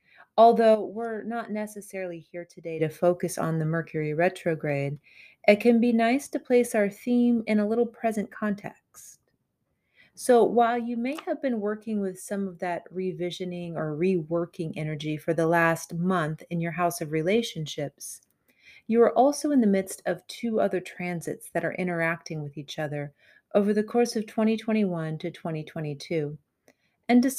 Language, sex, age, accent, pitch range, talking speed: English, female, 30-49, American, 165-220 Hz, 160 wpm